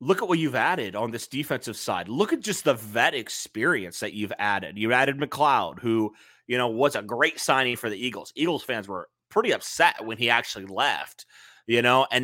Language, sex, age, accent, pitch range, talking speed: English, male, 30-49, American, 110-145 Hz, 210 wpm